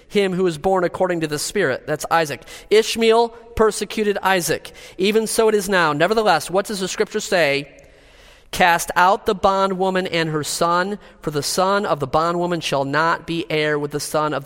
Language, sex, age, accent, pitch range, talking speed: English, male, 40-59, American, 165-220 Hz, 185 wpm